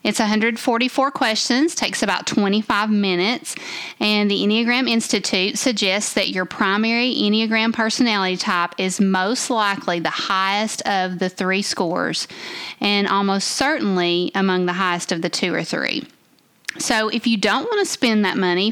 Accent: American